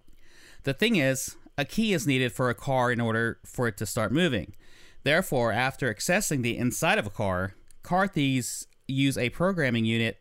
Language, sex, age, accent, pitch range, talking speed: English, male, 30-49, American, 110-130 Hz, 180 wpm